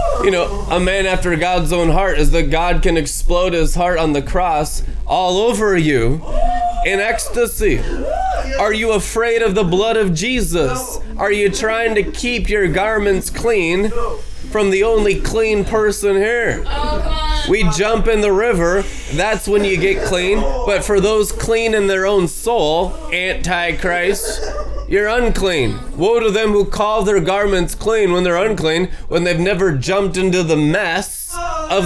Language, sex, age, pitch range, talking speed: English, male, 20-39, 170-220 Hz, 160 wpm